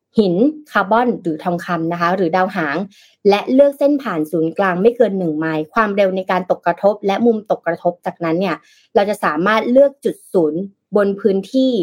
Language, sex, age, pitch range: Thai, female, 20-39, 170-235 Hz